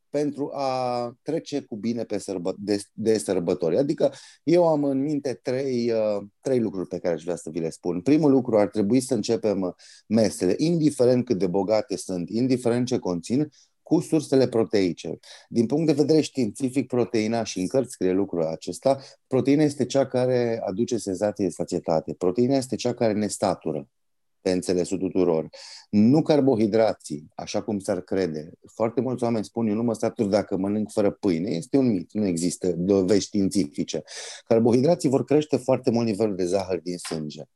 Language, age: Romanian, 30-49